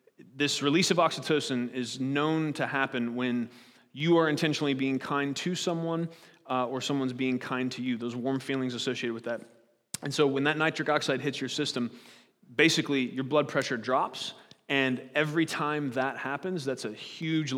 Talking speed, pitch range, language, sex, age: 175 wpm, 125-150 Hz, English, male, 30-49